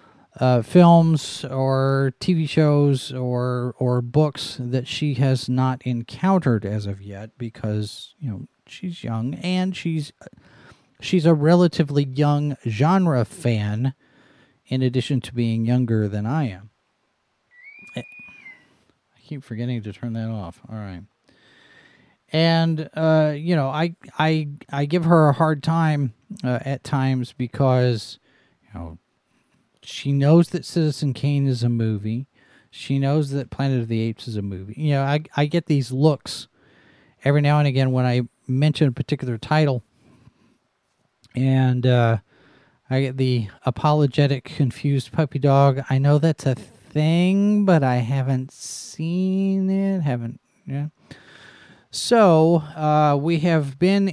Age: 40-59